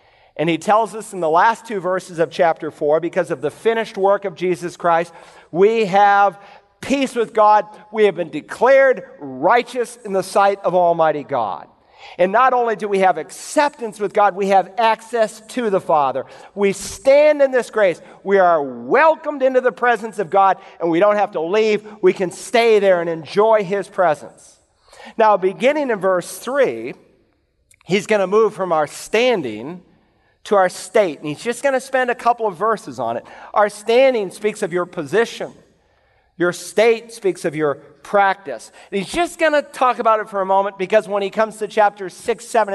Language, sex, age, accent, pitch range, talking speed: English, male, 50-69, American, 180-225 Hz, 190 wpm